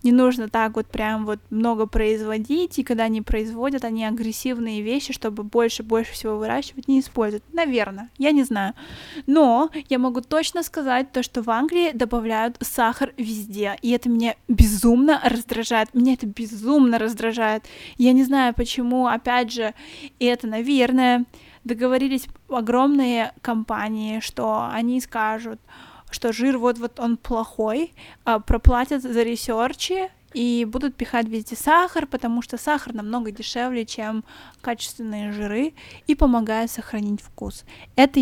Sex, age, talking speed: female, 20-39, 135 wpm